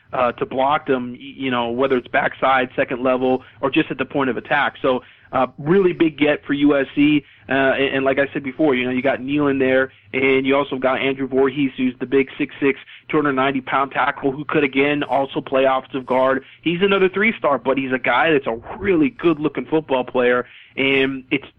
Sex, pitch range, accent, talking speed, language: male, 125-140 Hz, American, 215 wpm, English